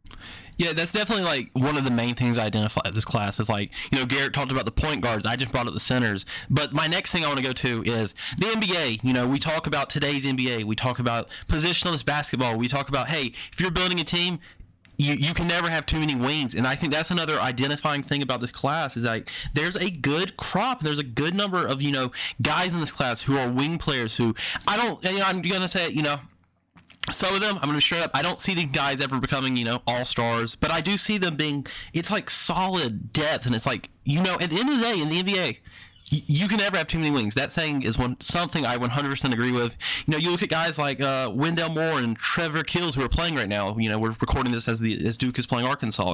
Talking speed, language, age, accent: 265 wpm, English, 20-39, American